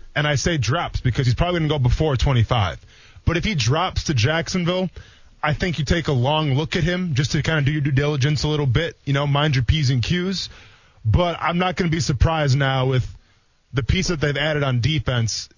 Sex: male